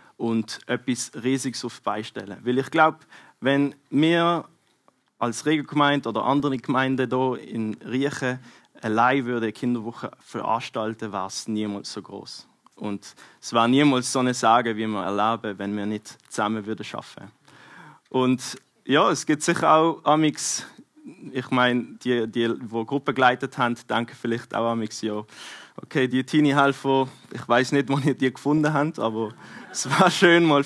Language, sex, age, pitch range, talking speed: German, male, 20-39, 115-140 Hz, 155 wpm